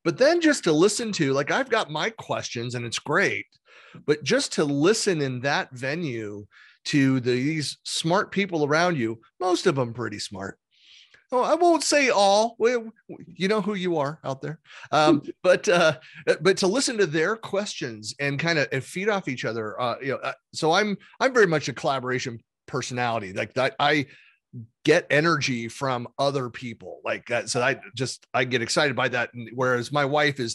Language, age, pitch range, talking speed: English, 30-49, 115-165 Hz, 195 wpm